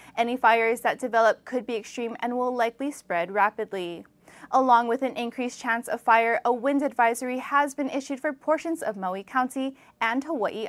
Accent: American